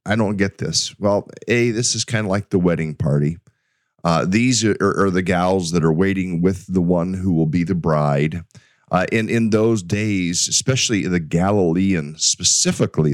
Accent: American